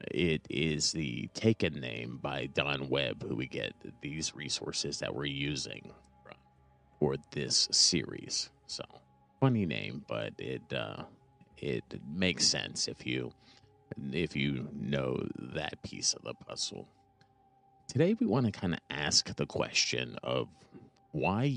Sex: male